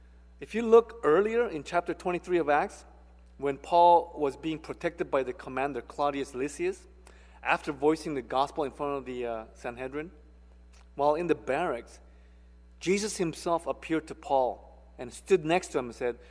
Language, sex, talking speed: English, male, 165 wpm